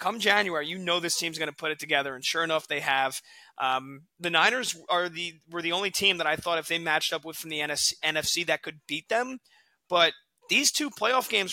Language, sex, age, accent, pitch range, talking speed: English, male, 30-49, American, 155-185 Hz, 235 wpm